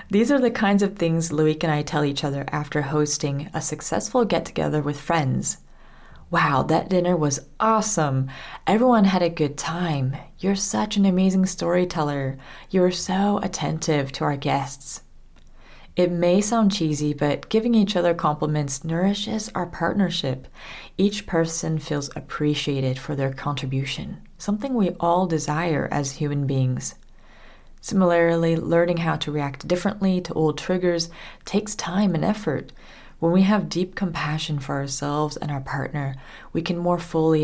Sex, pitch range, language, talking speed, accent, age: female, 145-185 Hz, English, 150 wpm, American, 30-49